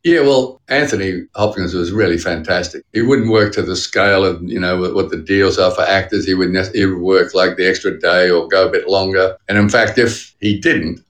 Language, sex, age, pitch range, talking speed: English, male, 50-69, 100-125 Hz, 215 wpm